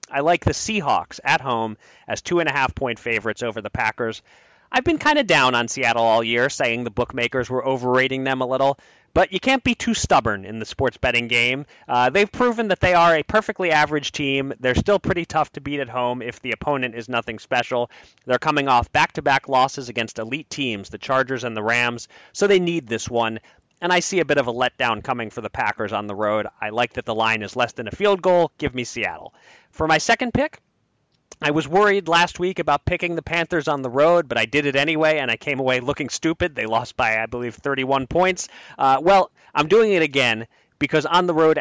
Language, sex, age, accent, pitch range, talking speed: English, male, 30-49, American, 115-160 Hz, 225 wpm